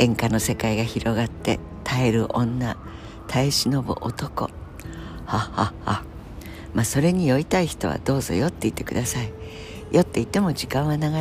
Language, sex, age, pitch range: Japanese, female, 60-79, 90-120 Hz